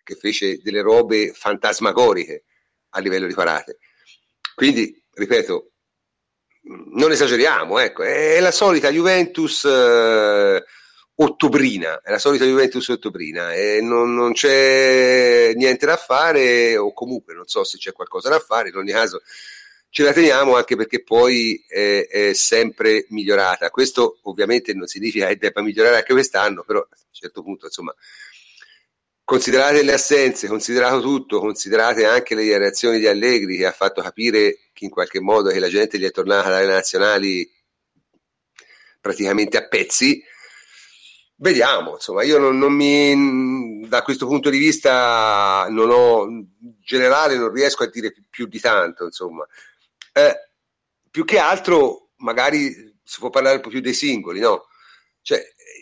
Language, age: Italian, 40-59